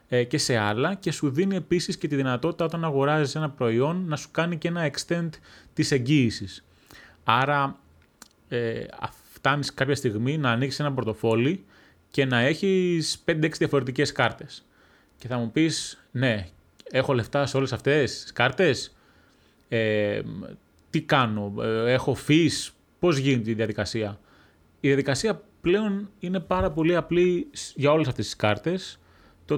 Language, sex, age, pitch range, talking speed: Greek, male, 30-49, 115-160 Hz, 145 wpm